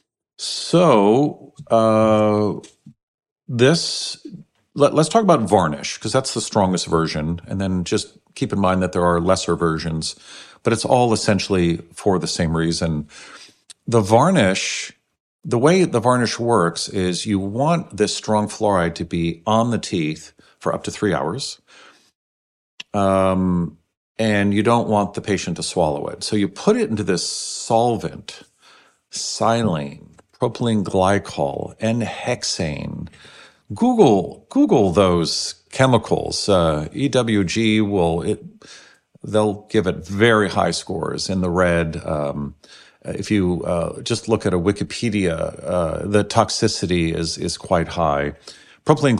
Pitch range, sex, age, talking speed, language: 85-115 Hz, male, 50-69, 135 wpm, English